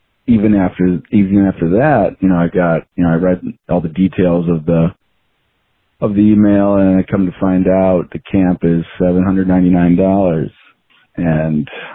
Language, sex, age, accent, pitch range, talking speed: English, male, 30-49, American, 85-95 Hz, 180 wpm